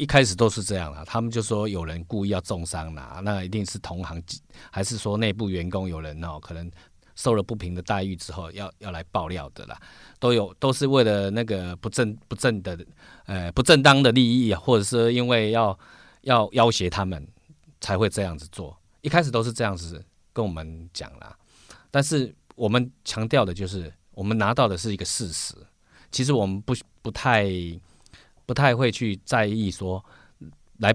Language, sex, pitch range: Chinese, male, 90-115 Hz